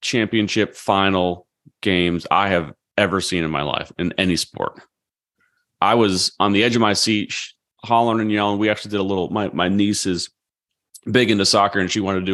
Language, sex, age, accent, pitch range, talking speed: English, male, 30-49, American, 90-110 Hz, 205 wpm